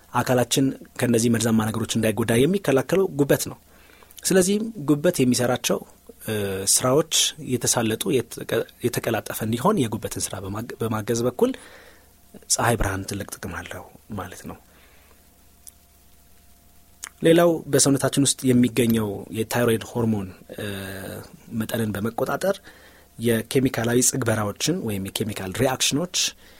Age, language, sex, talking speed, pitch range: 30-49, Amharic, male, 85 wpm, 100-125 Hz